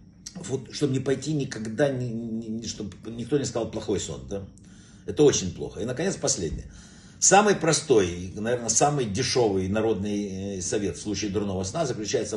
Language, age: Russian, 60-79